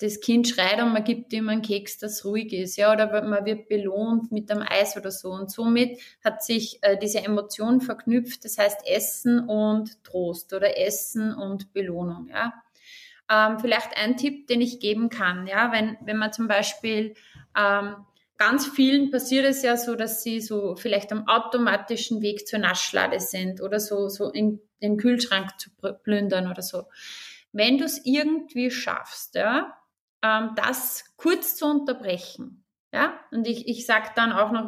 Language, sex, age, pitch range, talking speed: German, female, 20-39, 205-245 Hz, 175 wpm